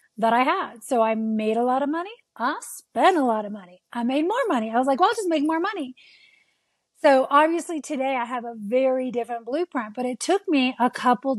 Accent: American